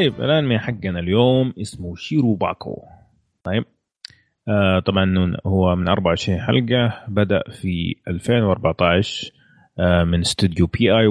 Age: 30-49